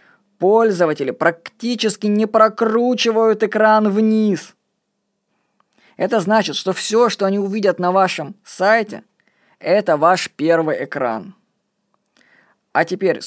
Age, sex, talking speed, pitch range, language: 20-39, female, 100 wpm, 165-220 Hz, Russian